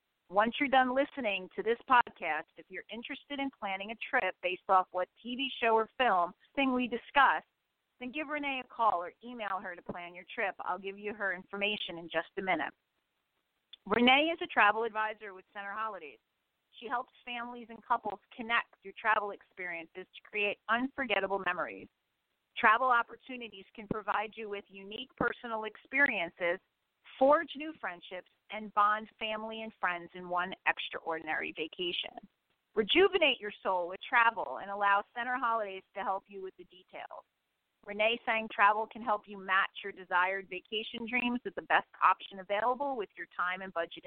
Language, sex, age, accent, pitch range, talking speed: English, female, 40-59, American, 190-240 Hz, 165 wpm